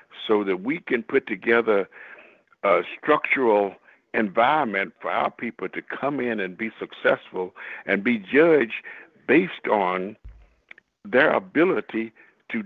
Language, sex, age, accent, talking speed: English, male, 60-79, American, 125 wpm